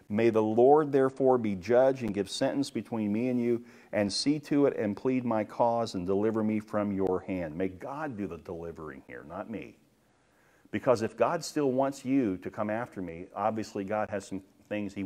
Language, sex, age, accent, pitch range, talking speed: English, male, 50-69, American, 100-130 Hz, 205 wpm